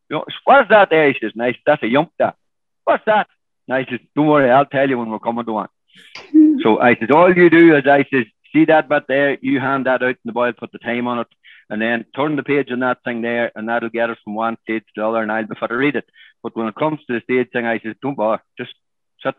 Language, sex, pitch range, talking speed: English, male, 115-140 Hz, 290 wpm